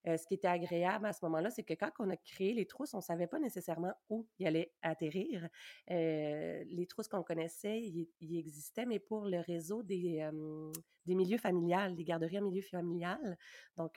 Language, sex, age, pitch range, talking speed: French, female, 30-49, 165-195 Hz, 200 wpm